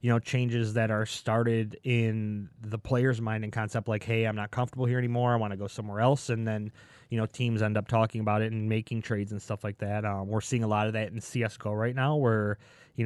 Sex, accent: male, American